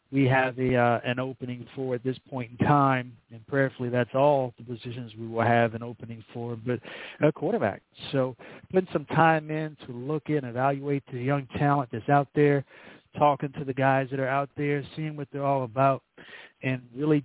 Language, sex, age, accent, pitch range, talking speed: English, male, 40-59, American, 125-145 Hz, 200 wpm